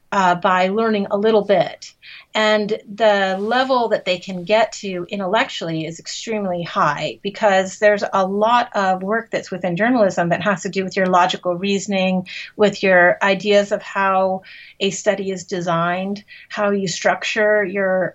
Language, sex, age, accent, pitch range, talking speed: English, female, 30-49, American, 180-215 Hz, 160 wpm